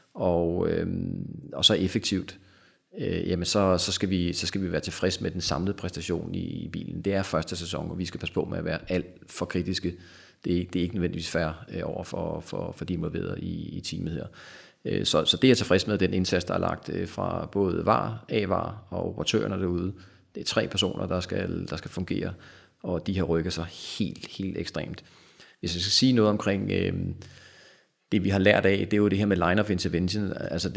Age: 30-49